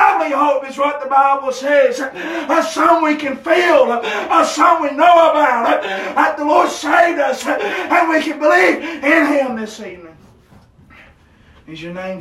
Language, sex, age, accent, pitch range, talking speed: English, male, 30-49, American, 220-285 Hz, 175 wpm